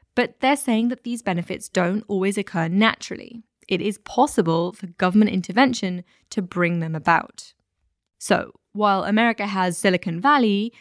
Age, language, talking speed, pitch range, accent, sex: 10-29, English, 145 wpm, 175-225 Hz, British, female